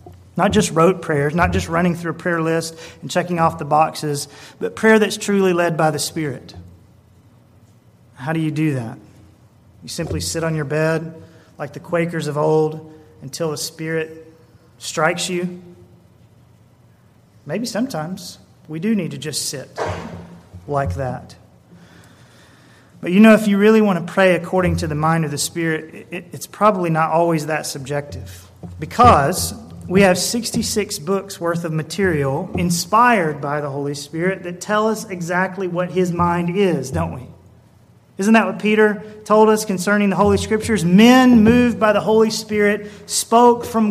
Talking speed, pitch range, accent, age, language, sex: 160 wpm, 150-210 Hz, American, 30-49, English, male